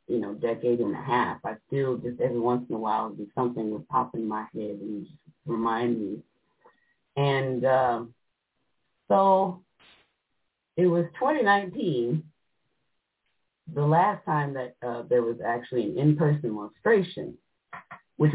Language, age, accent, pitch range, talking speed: English, 30-49, American, 120-160 Hz, 135 wpm